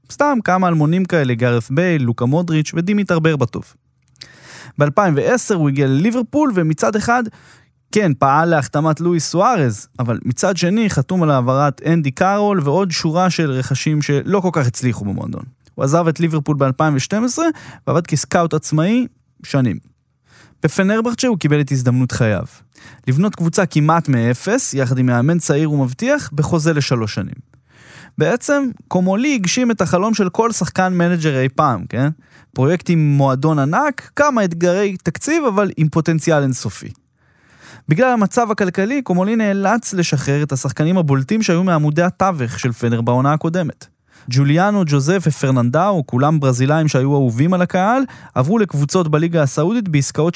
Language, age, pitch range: Hebrew, 20-39, 135-195 Hz